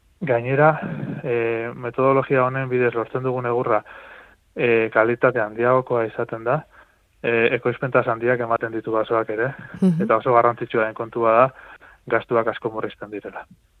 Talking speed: 130 wpm